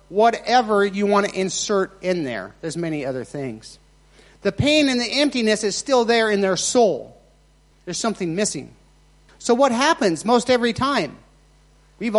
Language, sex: English, male